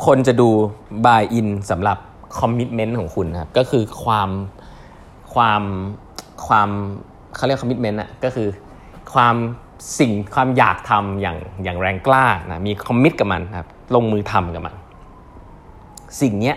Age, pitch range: 20-39, 95-130 Hz